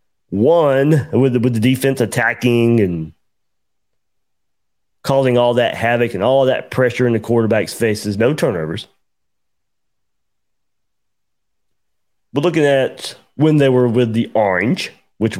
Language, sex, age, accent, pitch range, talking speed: English, male, 30-49, American, 105-125 Hz, 125 wpm